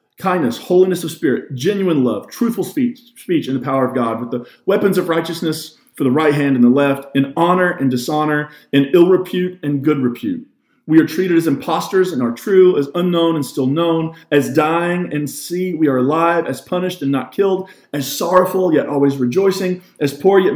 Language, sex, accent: English, male, American